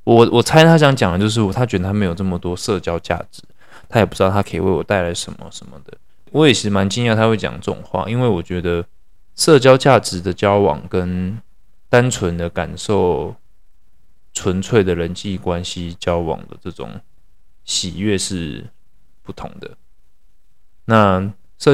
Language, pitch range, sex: Chinese, 85-105 Hz, male